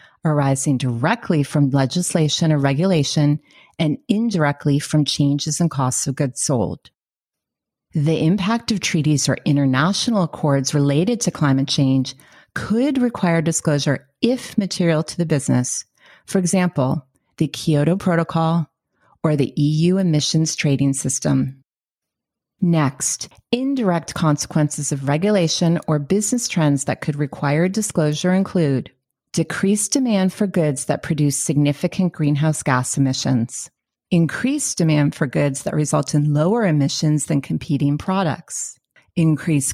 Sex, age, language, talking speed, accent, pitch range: female, 30-49, English, 120 wpm, American, 145-180 Hz